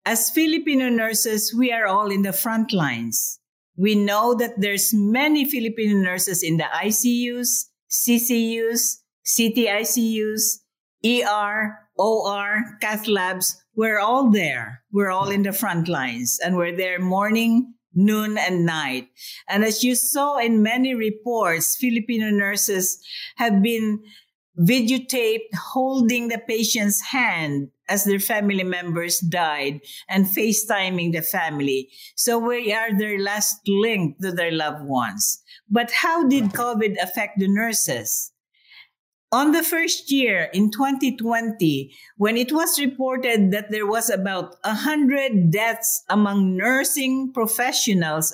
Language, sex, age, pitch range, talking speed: English, female, 50-69, 185-240 Hz, 130 wpm